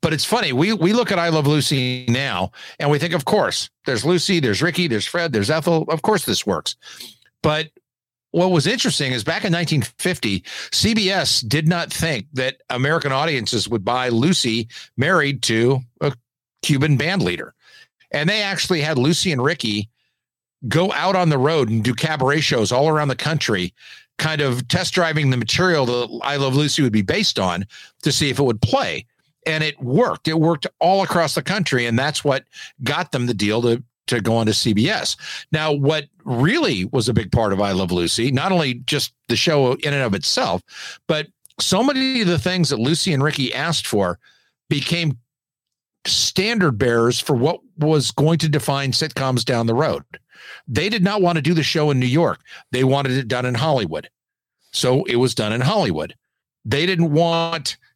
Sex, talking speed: male, 190 wpm